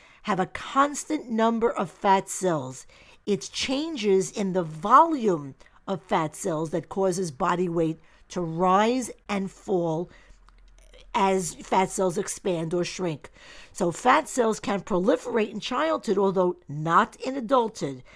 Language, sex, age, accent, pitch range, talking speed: English, female, 50-69, American, 170-225 Hz, 130 wpm